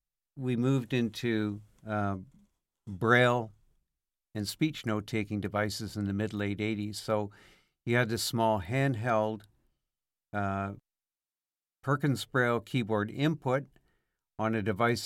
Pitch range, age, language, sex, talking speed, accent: 95-115 Hz, 60-79, English, male, 110 wpm, American